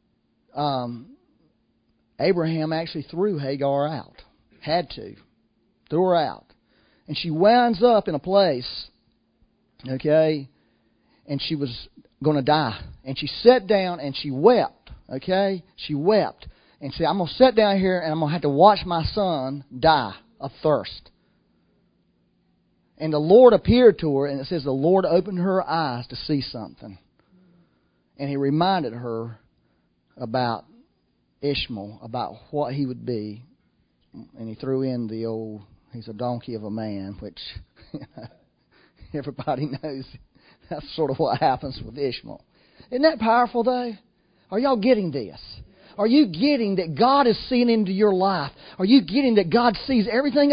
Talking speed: 155 wpm